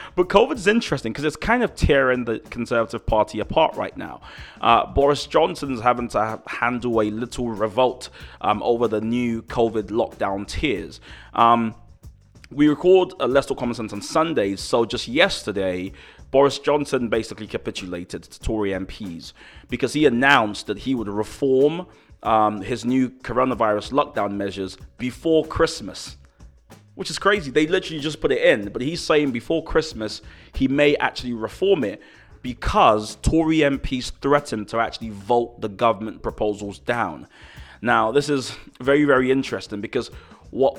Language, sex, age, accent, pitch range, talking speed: English, male, 20-39, British, 110-140 Hz, 155 wpm